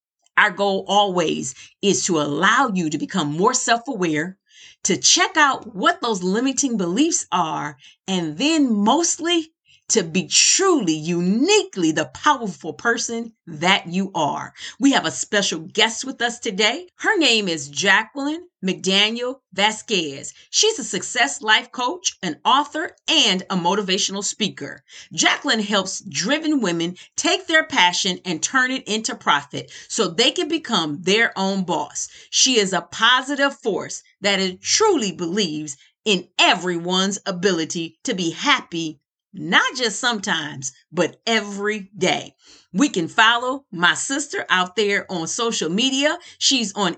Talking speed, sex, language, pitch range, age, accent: 140 wpm, female, English, 180-265 Hz, 40-59, American